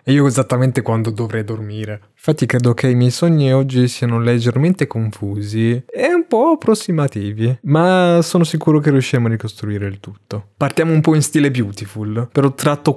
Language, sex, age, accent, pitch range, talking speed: Italian, male, 20-39, native, 110-140 Hz, 170 wpm